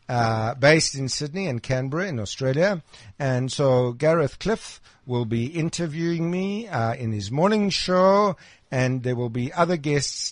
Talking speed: 155 wpm